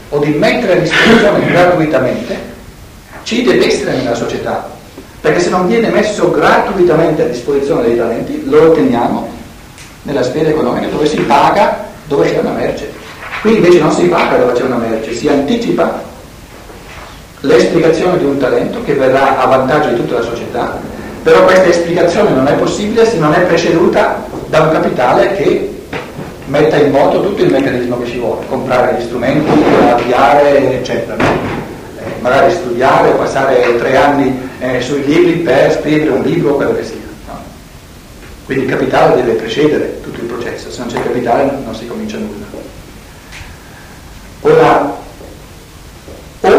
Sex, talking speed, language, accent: male, 155 wpm, Italian, native